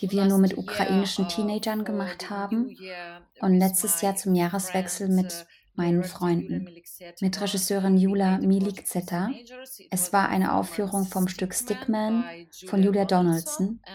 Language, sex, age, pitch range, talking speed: Polish, female, 20-39, 185-200 Hz, 130 wpm